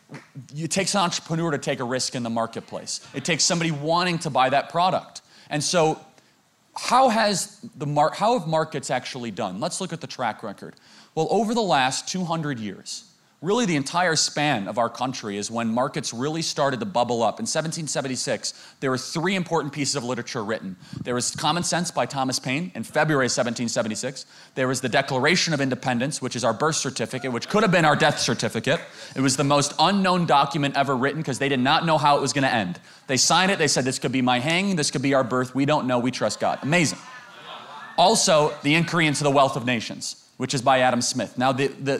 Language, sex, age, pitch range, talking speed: English, male, 30-49, 130-170 Hz, 215 wpm